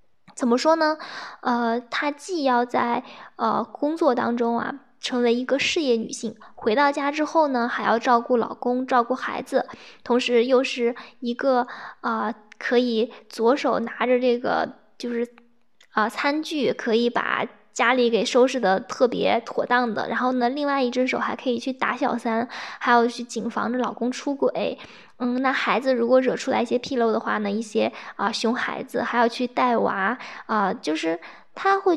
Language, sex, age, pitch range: Chinese, female, 10-29, 235-265 Hz